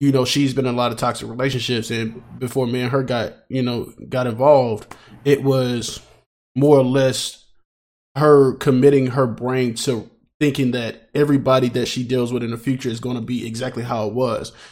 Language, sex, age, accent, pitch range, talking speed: English, male, 20-39, American, 120-140 Hz, 195 wpm